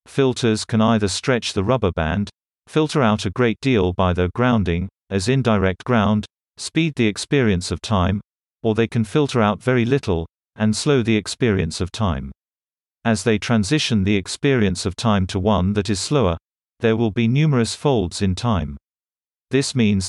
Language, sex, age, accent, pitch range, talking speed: English, male, 50-69, British, 95-120 Hz, 170 wpm